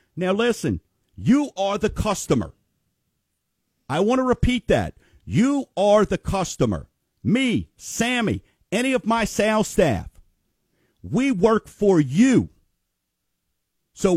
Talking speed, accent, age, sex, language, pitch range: 115 wpm, American, 50-69, male, English, 155-220 Hz